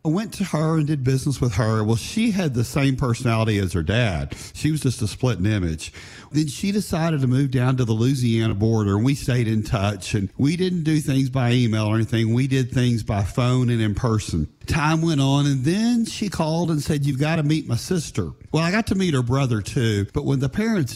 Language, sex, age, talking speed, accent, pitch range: English, male, 50-69, 240 wpm, American, 110-140 Hz